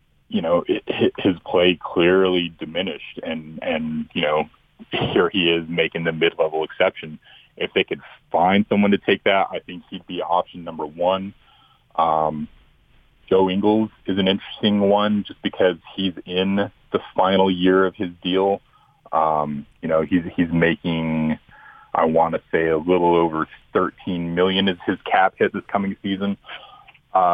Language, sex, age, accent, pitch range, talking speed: English, male, 30-49, American, 85-100 Hz, 160 wpm